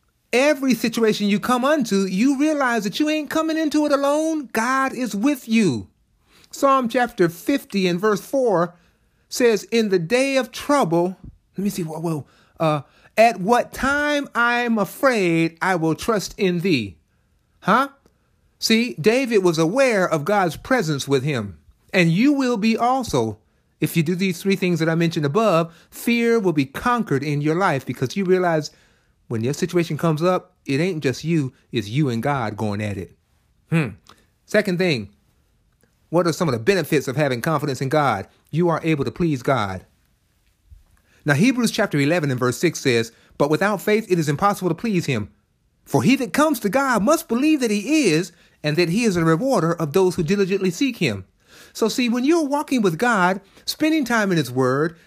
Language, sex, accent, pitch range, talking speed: English, male, American, 150-235 Hz, 185 wpm